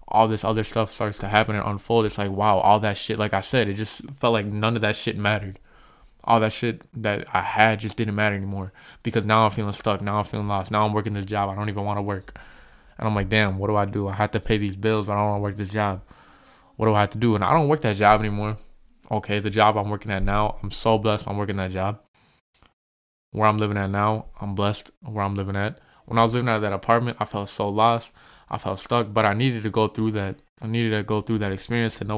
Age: 20-39